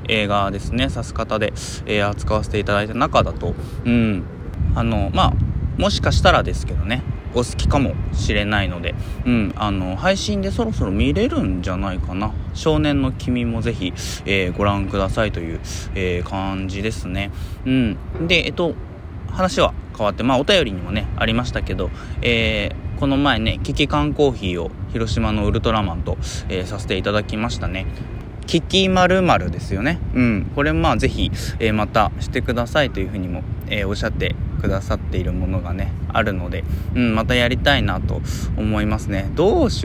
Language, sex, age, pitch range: Japanese, male, 20-39, 95-120 Hz